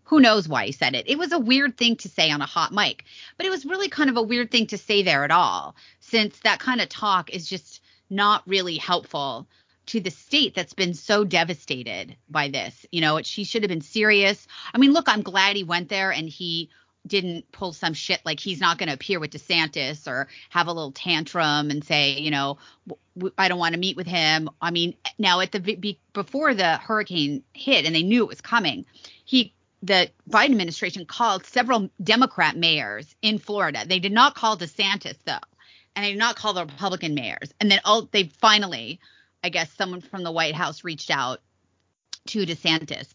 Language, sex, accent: English, female, American